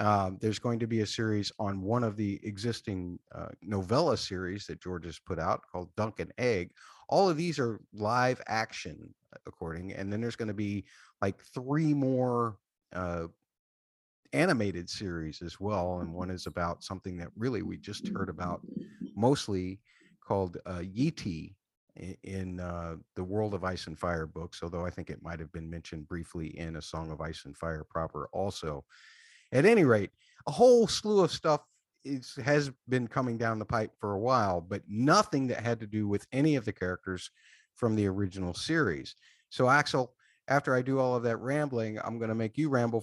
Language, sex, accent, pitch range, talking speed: English, male, American, 95-125 Hz, 185 wpm